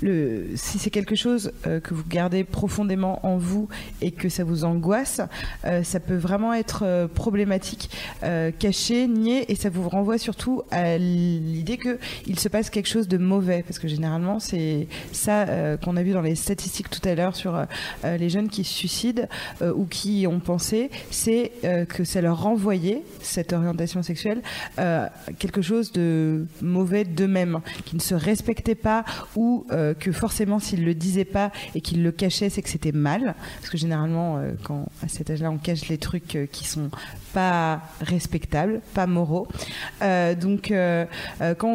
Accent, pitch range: French, 170-210 Hz